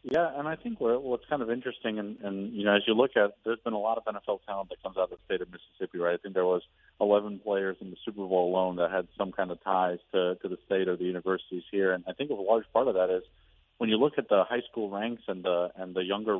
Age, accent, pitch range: 40-59, American, 95-110 Hz